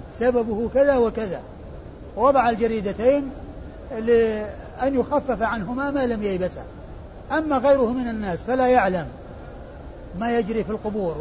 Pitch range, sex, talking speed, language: 205-250 Hz, male, 110 wpm, Arabic